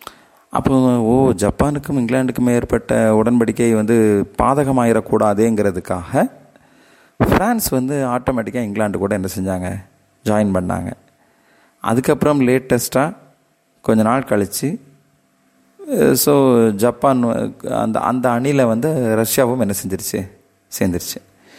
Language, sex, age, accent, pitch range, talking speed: Tamil, male, 30-49, native, 100-125 Hz, 90 wpm